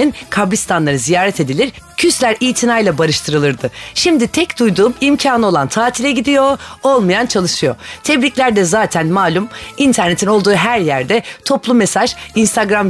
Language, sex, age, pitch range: Turkish, female, 30-49, 170-255 Hz